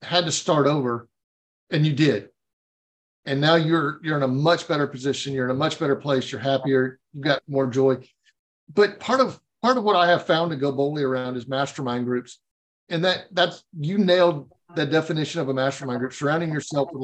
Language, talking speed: English, 205 wpm